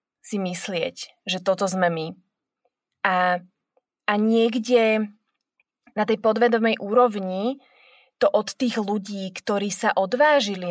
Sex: female